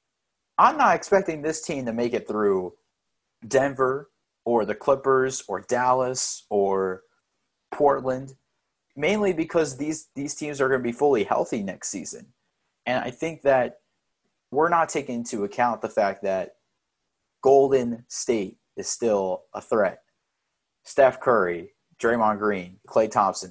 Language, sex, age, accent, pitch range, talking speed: English, male, 30-49, American, 105-140 Hz, 140 wpm